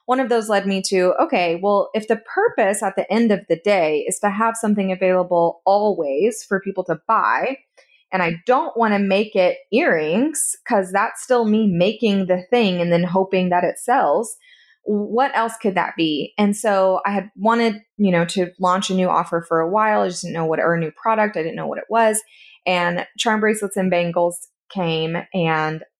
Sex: female